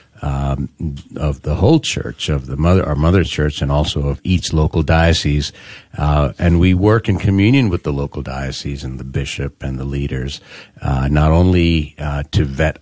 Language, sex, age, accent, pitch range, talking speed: English, male, 50-69, American, 75-95 Hz, 185 wpm